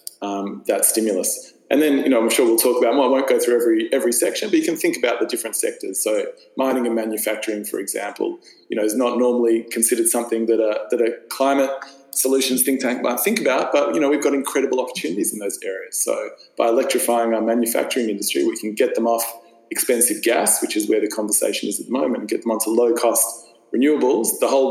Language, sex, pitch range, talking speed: English, male, 110-135 Hz, 225 wpm